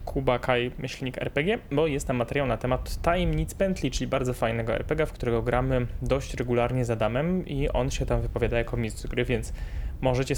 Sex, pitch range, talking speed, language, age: male, 125-145 Hz, 195 wpm, Polish, 20-39